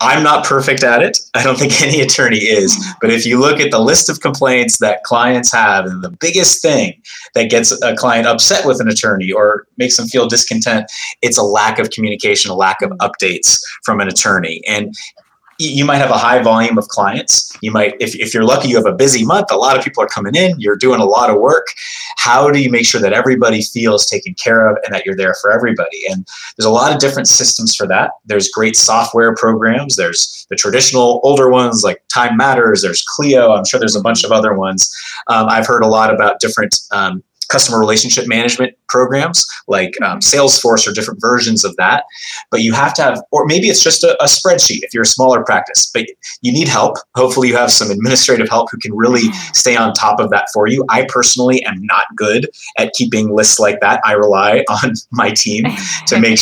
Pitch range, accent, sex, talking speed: 110-140 Hz, American, male, 220 wpm